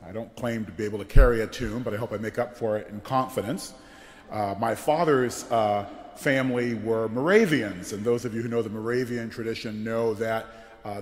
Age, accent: 40-59, American